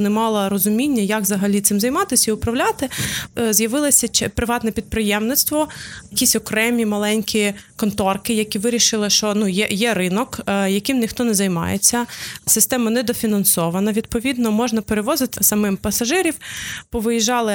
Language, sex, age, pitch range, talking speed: Ukrainian, female, 20-39, 205-245 Hz, 120 wpm